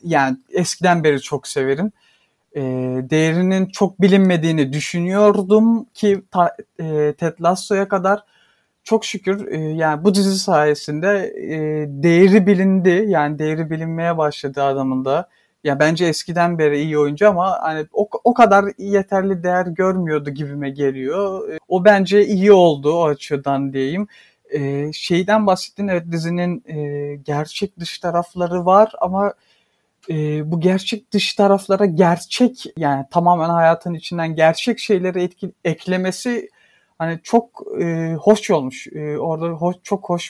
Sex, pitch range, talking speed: male, 150-195 Hz, 120 wpm